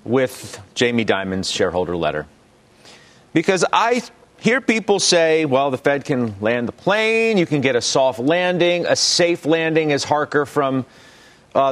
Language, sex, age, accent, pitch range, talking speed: English, male, 40-59, American, 115-160 Hz, 155 wpm